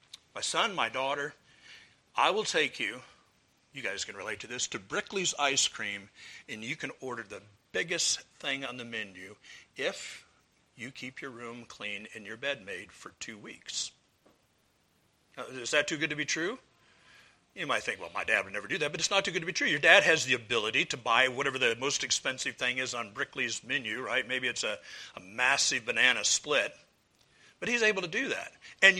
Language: English